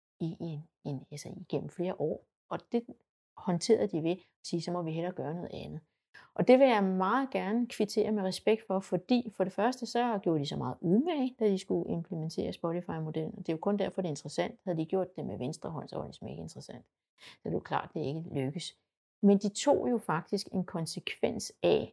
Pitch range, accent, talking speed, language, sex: 165-220 Hz, native, 220 wpm, Danish, female